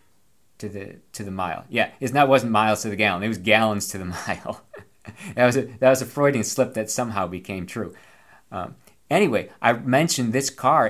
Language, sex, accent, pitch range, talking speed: English, male, American, 95-115 Hz, 200 wpm